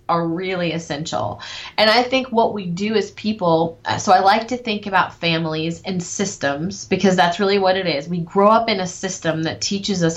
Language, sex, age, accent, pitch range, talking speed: English, female, 30-49, American, 165-205 Hz, 205 wpm